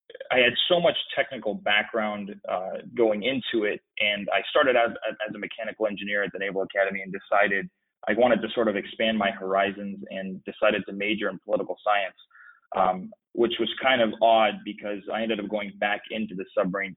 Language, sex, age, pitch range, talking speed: English, male, 20-39, 100-115 Hz, 195 wpm